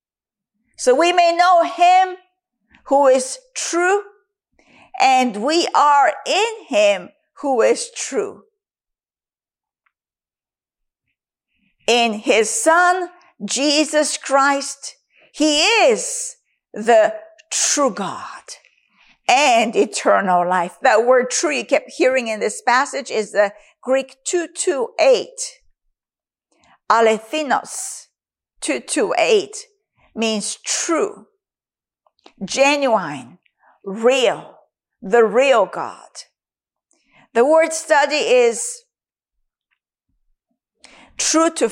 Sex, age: female, 50-69